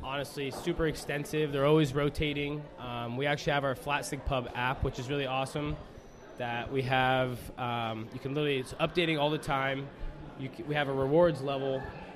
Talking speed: 190 wpm